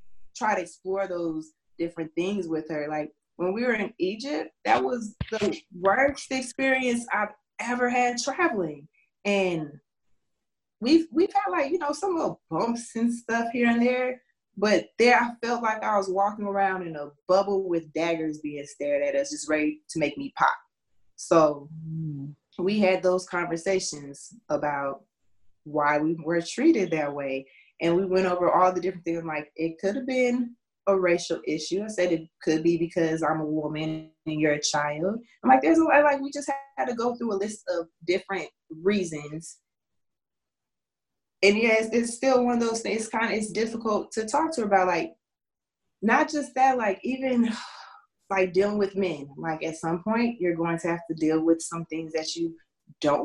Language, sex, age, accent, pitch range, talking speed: English, female, 20-39, American, 160-235 Hz, 185 wpm